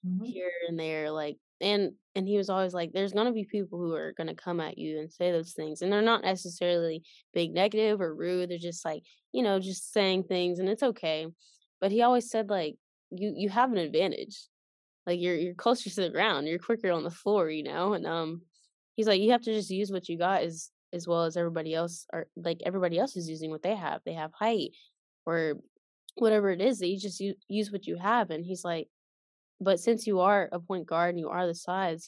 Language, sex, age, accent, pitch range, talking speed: English, female, 10-29, American, 165-195 Hz, 235 wpm